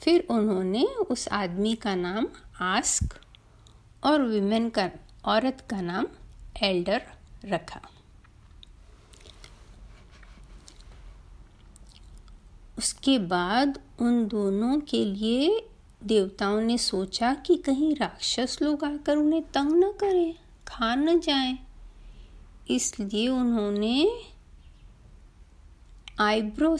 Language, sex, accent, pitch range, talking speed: Hindi, female, native, 180-275 Hz, 85 wpm